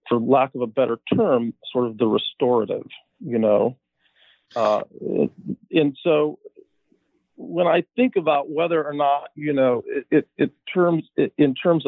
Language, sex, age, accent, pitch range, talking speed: English, male, 40-59, American, 115-155 Hz, 155 wpm